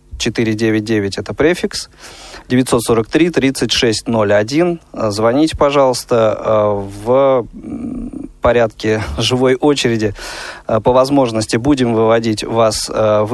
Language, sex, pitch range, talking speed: Russian, male, 110-135 Hz, 70 wpm